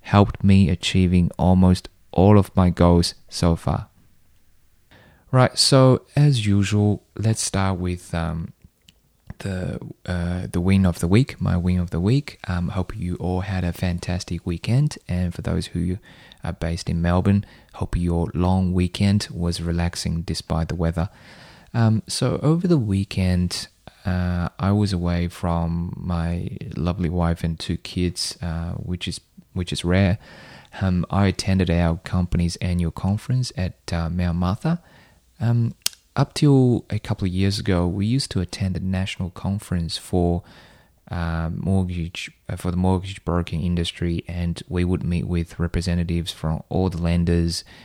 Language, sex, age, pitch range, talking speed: English, male, 20-39, 85-100 Hz, 155 wpm